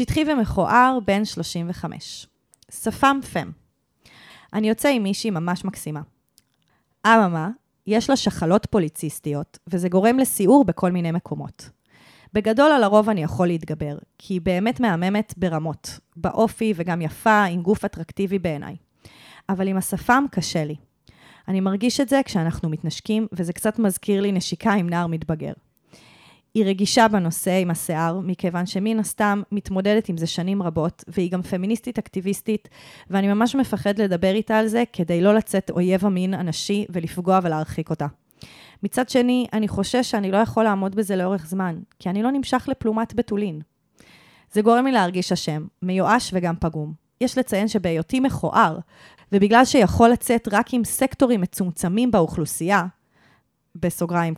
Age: 20-39